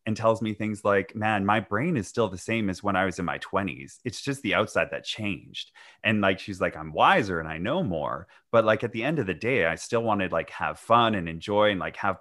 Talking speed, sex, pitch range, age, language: 270 wpm, male, 95-115 Hz, 30-49, English